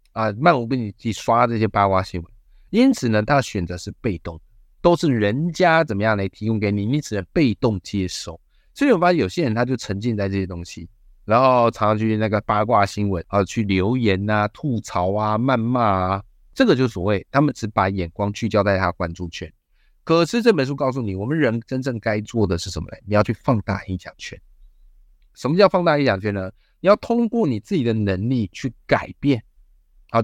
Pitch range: 95-125 Hz